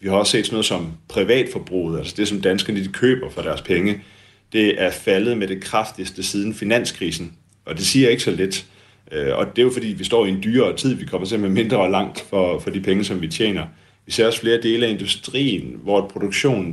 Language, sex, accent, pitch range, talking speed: Danish, male, native, 95-115 Hz, 235 wpm